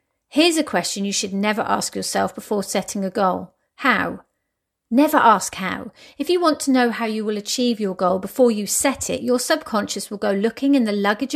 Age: 40-59